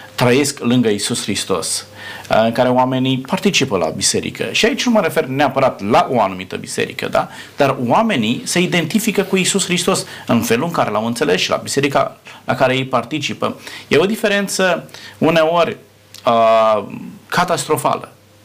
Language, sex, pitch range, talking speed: Romanian, male, 110-155 Hz, 155 wpm